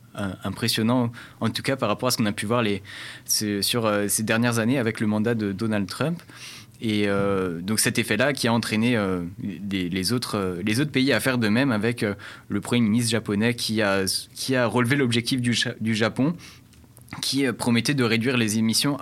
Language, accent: French, French